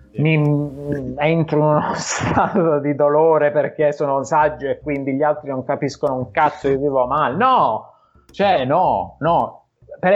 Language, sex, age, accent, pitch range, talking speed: Italian, male, 30-49, native, 120-160 Hz, 155 wpm